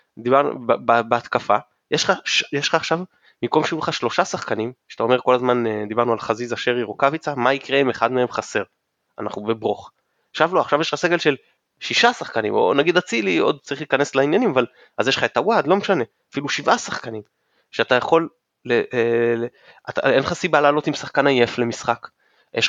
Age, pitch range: 20-39, 115-150 Hz